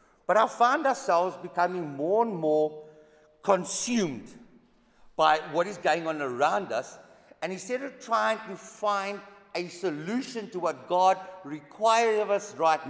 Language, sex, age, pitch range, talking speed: English, male, 50-69, 155-215 Hz, 145 wpm